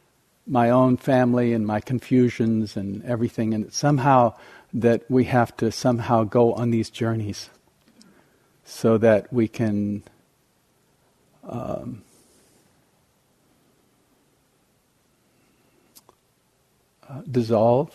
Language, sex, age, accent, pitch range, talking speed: English, male, 50-69, American, 110-130 Hz, 85 wpm